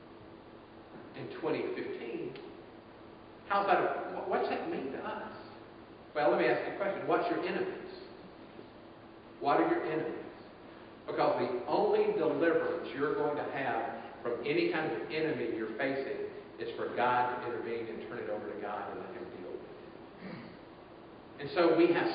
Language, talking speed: English, 165 wpm